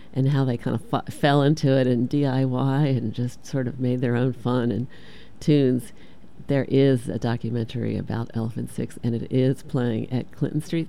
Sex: female